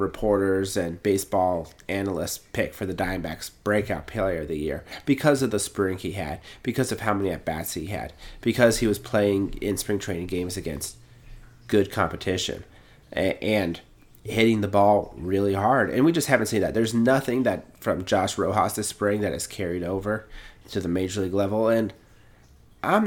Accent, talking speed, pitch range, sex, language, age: American, 180 wpm, 95-115 Hz, male, English, 30-49